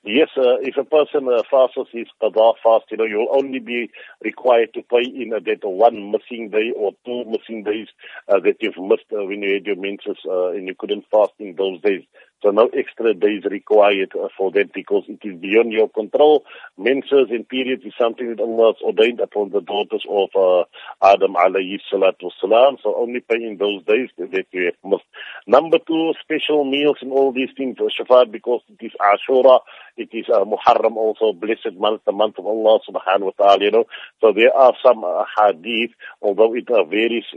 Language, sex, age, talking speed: English, male, 50-69, 200 wpm